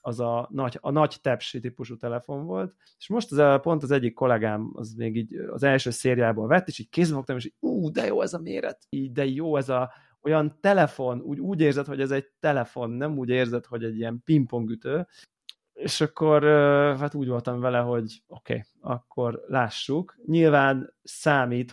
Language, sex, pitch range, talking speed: Hungarian, male, 115-145 Hz, 190 wpm